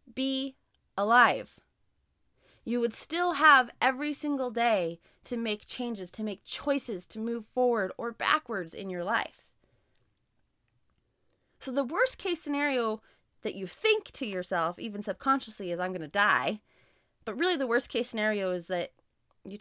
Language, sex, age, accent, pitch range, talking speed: English, female, 20-39, American, 190-265 Hz, 150 wpm